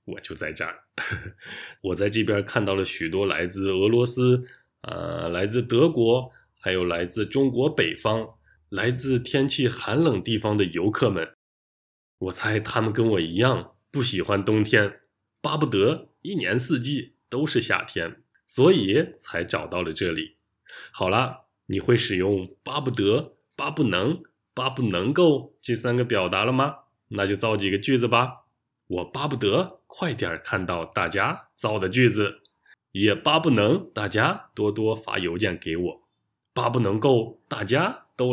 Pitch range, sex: 95-125 Hz, male